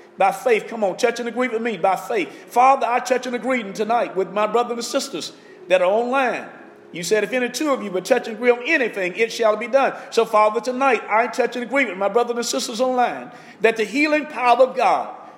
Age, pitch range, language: 50-69, 200-275 Hz, English